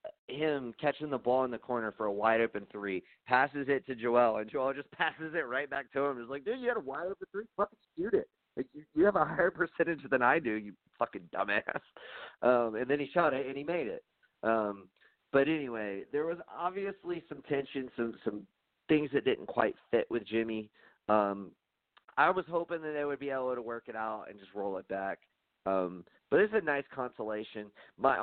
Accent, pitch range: American, 110-150 Hz